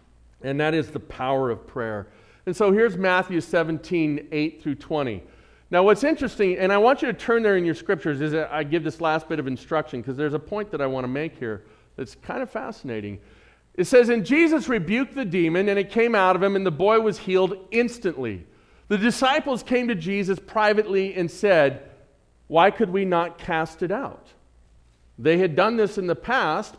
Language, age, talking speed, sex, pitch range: English, 40-59, 200 wpm, male, 140-210 Hz